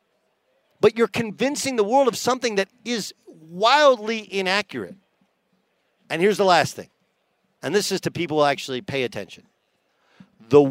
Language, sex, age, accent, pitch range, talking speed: English, male, 50-69, American, 150-195 Hz, 145 wpm